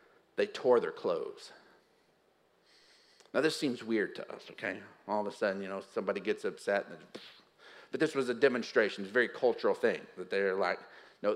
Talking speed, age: 185 wpm, 50-69